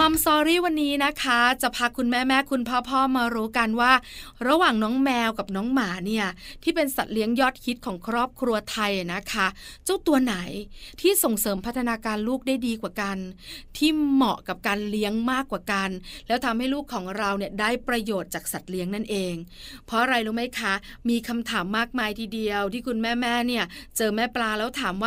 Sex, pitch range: female, 210-260 Hz